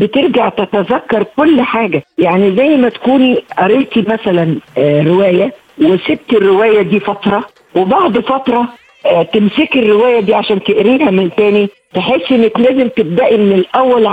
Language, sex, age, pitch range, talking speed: Arabic, female, 50-69, 185-235 Hz, 125 wpm